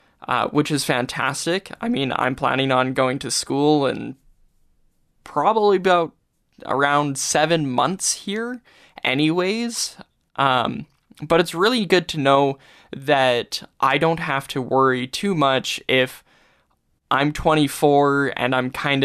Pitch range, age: 130-160 Hz, 10-29